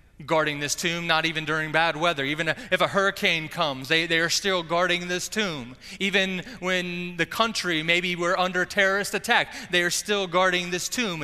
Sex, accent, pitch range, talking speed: male, American, 130-180 Hz, 185 wpm